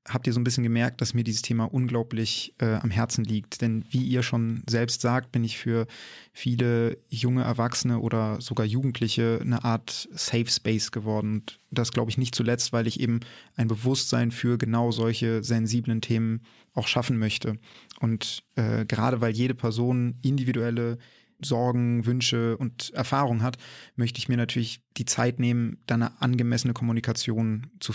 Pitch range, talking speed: 115-130 Hz, 165 wpm